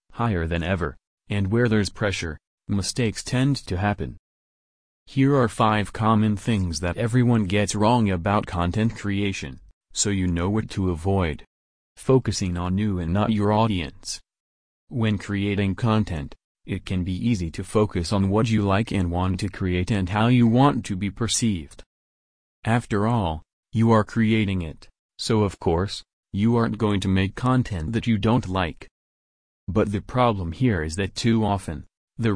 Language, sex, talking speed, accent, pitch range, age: English, male, 165 wpm, American, 90-115 Hz, 30-49